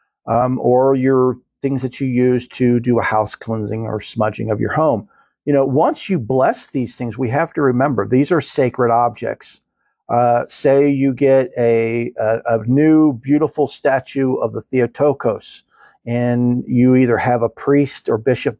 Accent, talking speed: American, 170 wpm